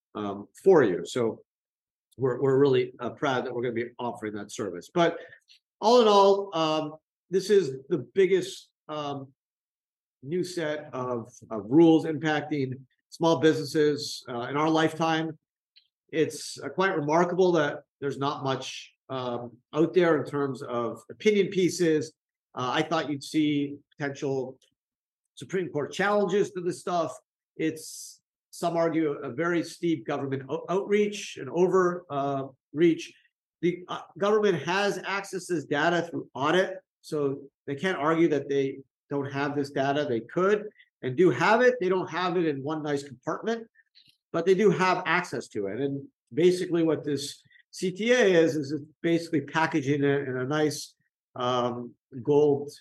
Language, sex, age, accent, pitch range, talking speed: English, male, 50-69, American, 140-180 Hz, 155 wpm